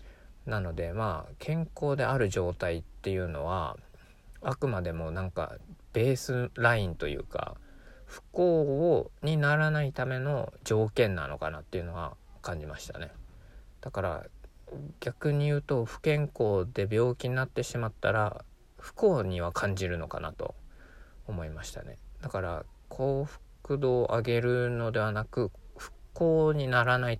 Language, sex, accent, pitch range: Japanese, male, native, 90-125 Hz